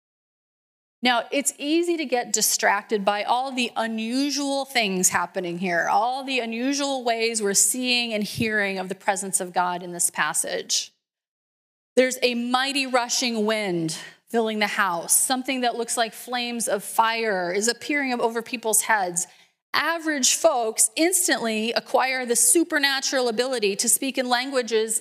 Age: 30-49